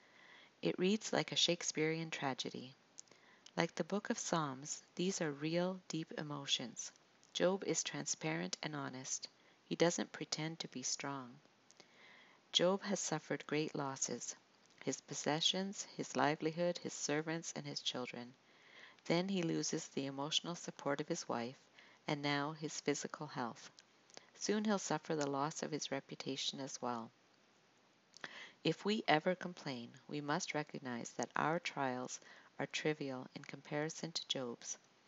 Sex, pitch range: female, 135-170 Hz